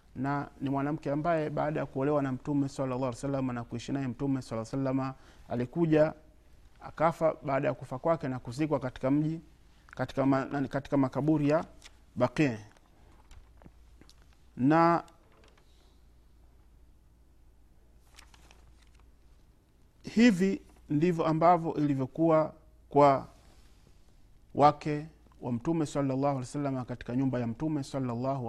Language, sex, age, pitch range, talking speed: Swahili, male, 50-69, 120-165 Hz, 110 wpm